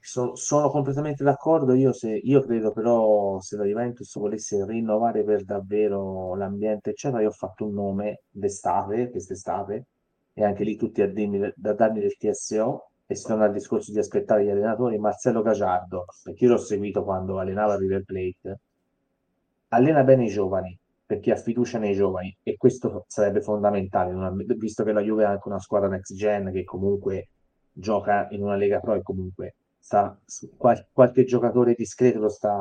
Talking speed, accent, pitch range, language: 165 wpm, native, 100-125 Hz, Italian